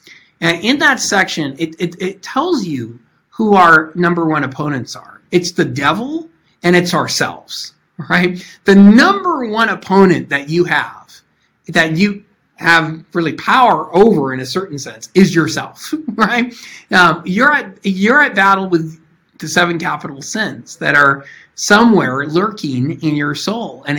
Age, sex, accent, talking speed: 50-69, male, American, 155 wpm